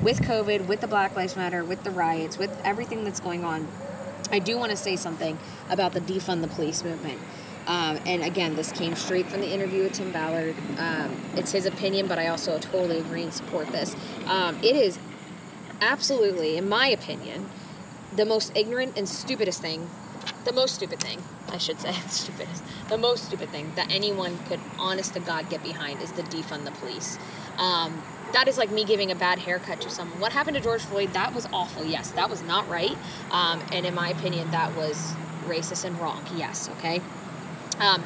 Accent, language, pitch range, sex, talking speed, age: American, English, 170-200 Hz, female, 200 wpm, 20-39